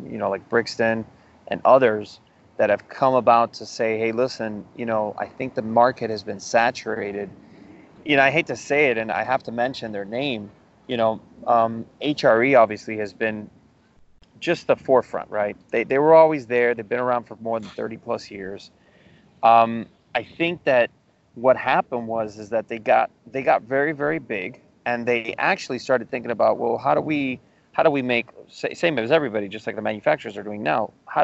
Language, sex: English, male